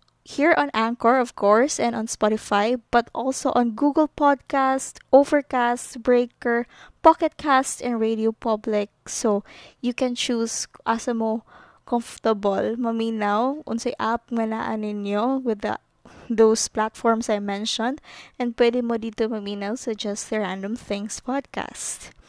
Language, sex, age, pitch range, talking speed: Filipino, female, 20-39, 220-255 Hz, 115 wpm